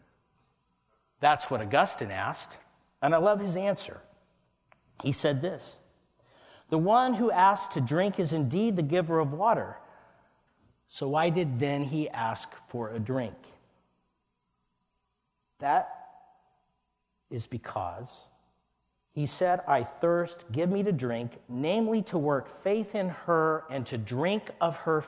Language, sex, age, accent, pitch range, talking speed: English, male, 50-69, American, 120-170 Hz, 130 wpm